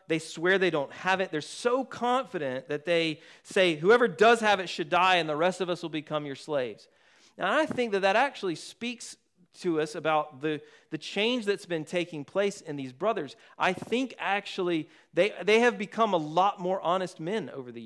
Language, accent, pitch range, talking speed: English, American, 150-210 Hz, 205 wpm